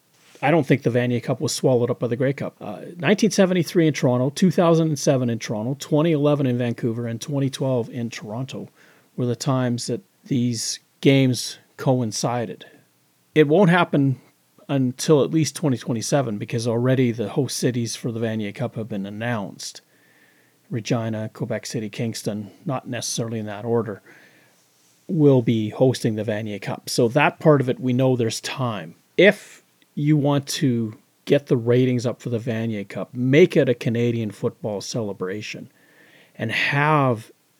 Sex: male